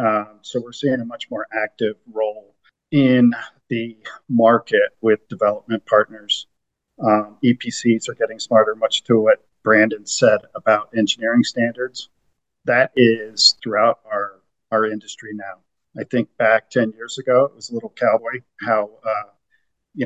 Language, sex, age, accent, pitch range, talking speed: English, male, 50-69, American, 110-120 Hz, 145 wpm